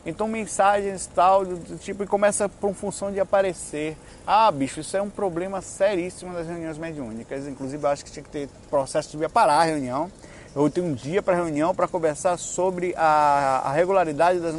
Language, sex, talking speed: Portuguese, male, 195 wpm